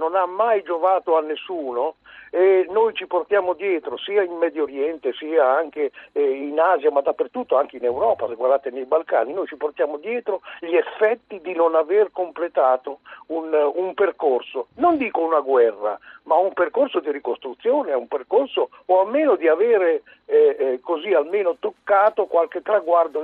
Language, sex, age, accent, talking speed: Italian, male, 60-79, native, 160 wpm